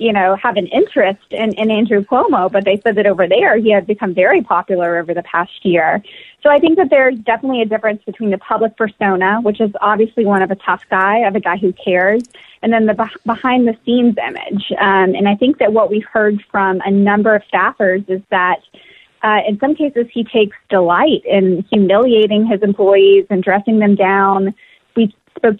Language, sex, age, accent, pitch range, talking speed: English, female, 20-39, American, 195-225 Hz, 210 wpm